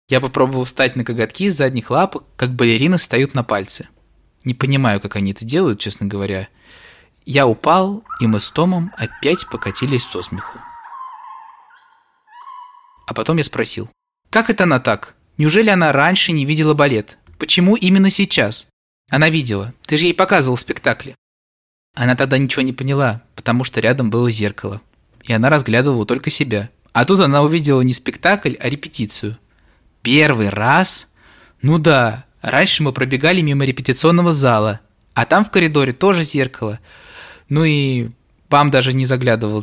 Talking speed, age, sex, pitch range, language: 150 wpm, 20-39, male, 110-155 Hz, Russian